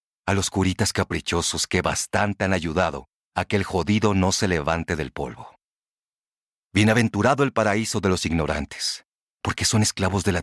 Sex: male